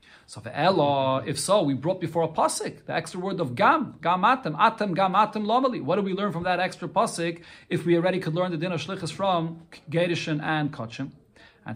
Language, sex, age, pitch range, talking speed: English, male, 40-59, 140-180 Hz, 205 wpm